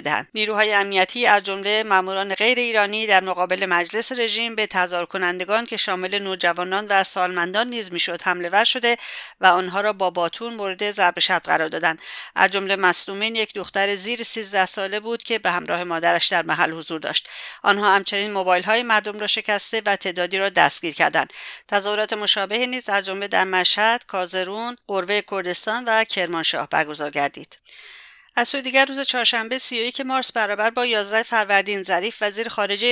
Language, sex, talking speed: English, female, 165 wpm